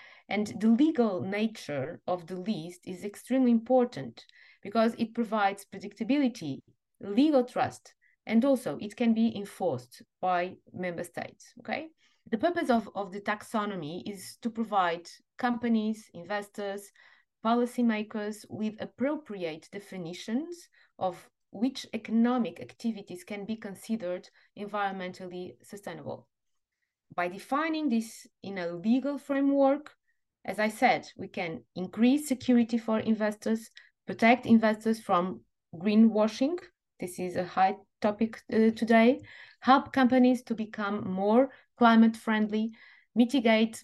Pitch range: 190-240 Hz